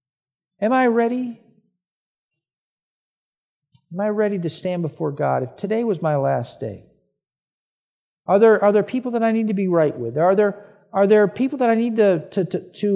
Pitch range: 165-225 Hz